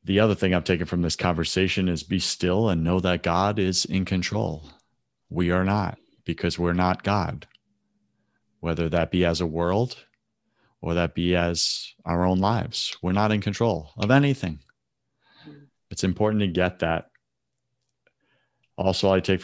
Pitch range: 90-120 Hz